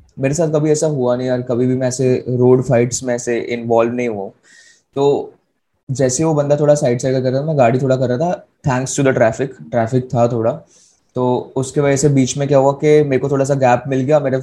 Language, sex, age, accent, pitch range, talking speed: Hindi, male, 20-39, native, 120-145 Hz, 240 wpm